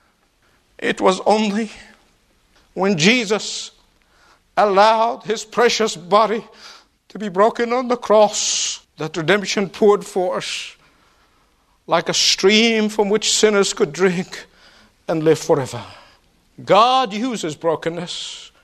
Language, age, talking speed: English, 50-69, 105 wpm